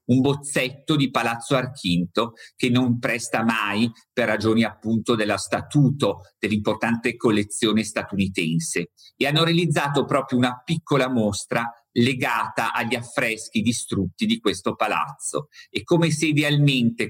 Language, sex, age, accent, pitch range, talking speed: Italian, male, 50-69, native, 115-145 Hz, 125 wpm